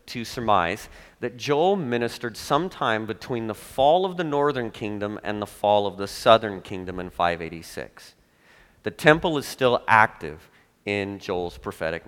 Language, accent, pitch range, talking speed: English, American, 100-150 Hz, 150 wpm